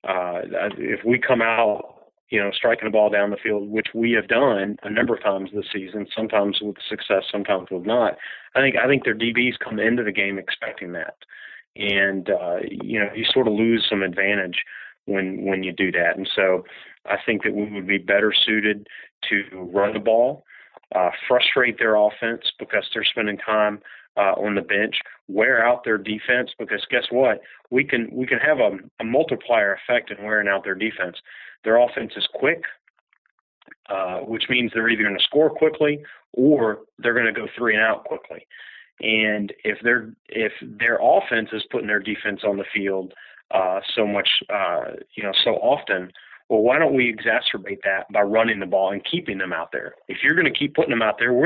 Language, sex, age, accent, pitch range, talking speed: English, male, 30-49, American, 100-115 Hz, 195 wpm